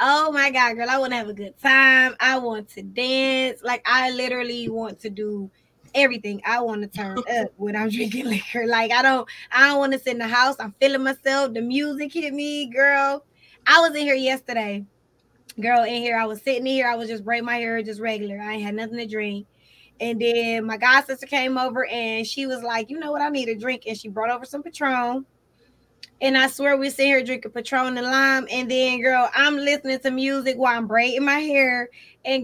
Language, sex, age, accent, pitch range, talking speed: English, female, 20-39, American, 235-285 Hz, 230 wpm